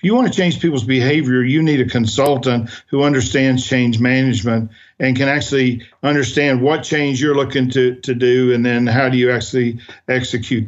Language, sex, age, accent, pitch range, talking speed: English, male, 50-69, American, 125-145 Hz, 180 wpm